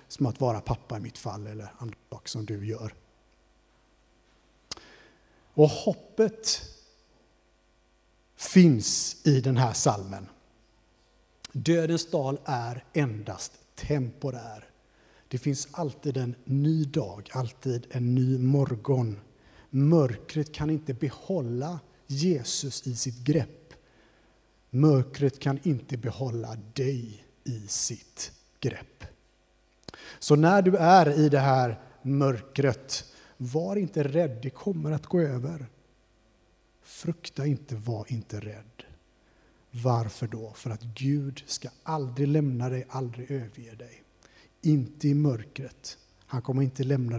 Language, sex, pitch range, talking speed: Swedish, male, 115-155 Hz, 115 wpm